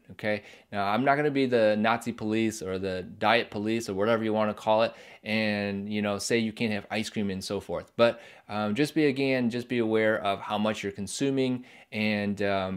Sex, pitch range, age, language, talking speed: male, 100-125 Hz, 20-39, English, 225 wpm